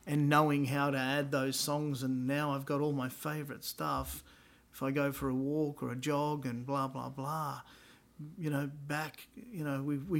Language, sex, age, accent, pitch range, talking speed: English, male, 50-69, Australian, 125-145 Hz, 200 wpm